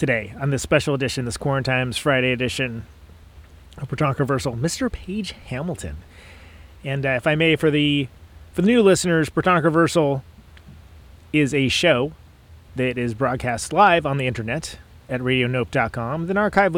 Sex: male